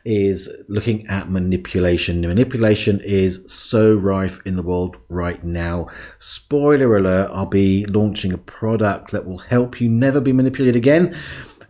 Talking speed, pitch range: 150 wpm, 95-125 Hz